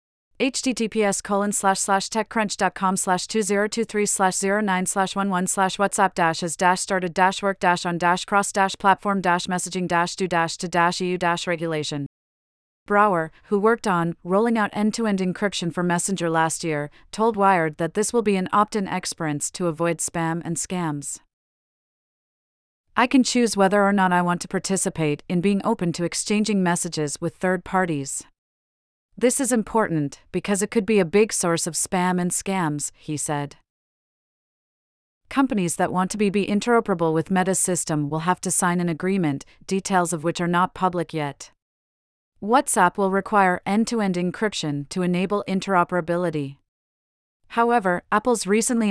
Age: 40-59